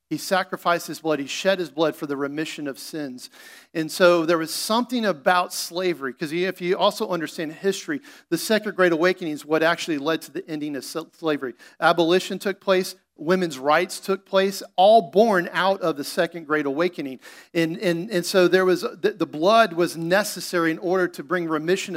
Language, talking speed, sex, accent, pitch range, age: English, 190 wpm, male, American, 150-185 Hz, 40-59